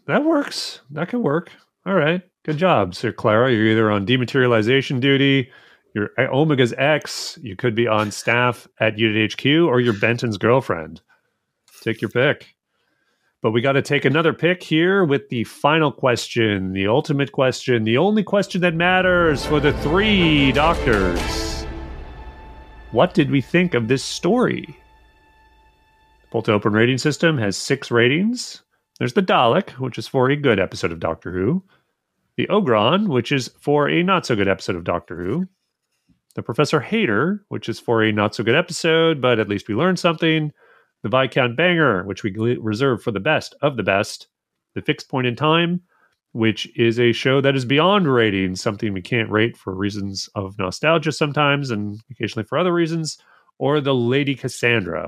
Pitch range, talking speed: 110-160 Hz, 165 wpm